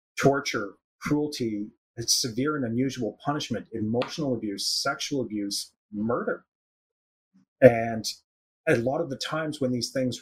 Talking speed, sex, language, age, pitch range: 120 wpm, male, English, 30-49, 115-140 Hz